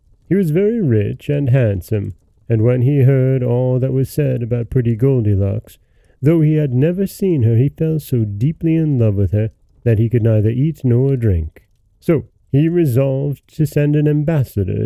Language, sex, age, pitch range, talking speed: English, male, 40-59, 110-145 Hz, 180 wpm